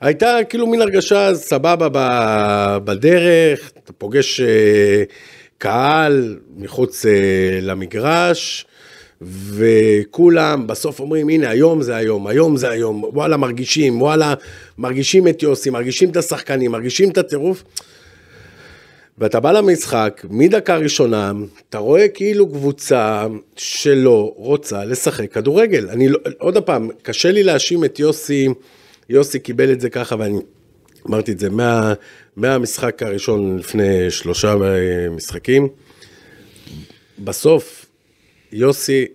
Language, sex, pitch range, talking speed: Hebrew, male, 110-160 Hz, 115 wpm